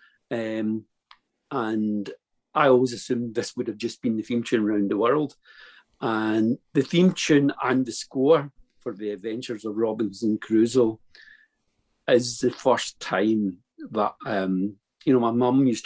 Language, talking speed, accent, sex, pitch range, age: English, 150 wpm, British, male, 110-150 Hz, 50-69